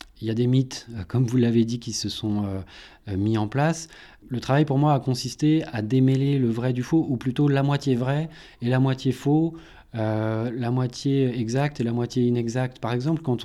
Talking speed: 215 wpm